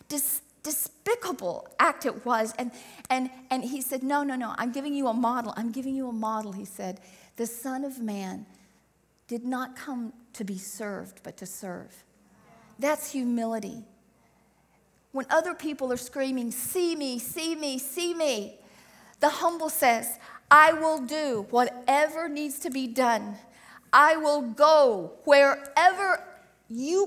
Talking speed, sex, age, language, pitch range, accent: 145 wpm, female, 50-69, English, 235-315 Hz, American